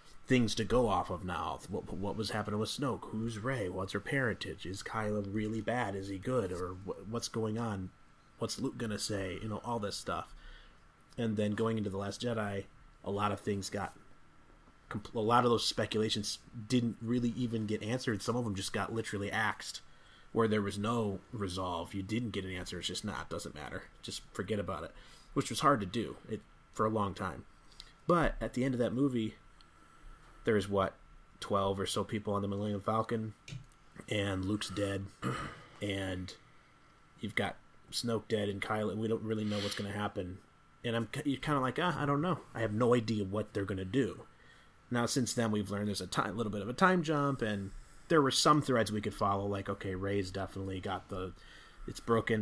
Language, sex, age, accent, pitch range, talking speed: English, male, 30-49, American, 100-115 Hz, 210 wpm